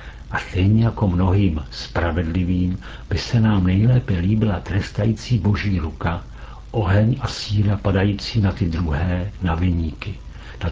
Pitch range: 85-100 Hz